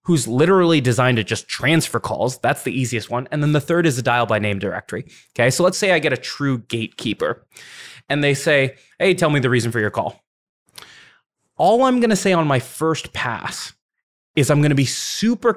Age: 20-39